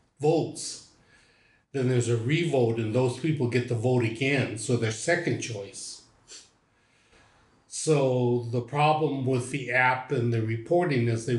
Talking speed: 140 wpm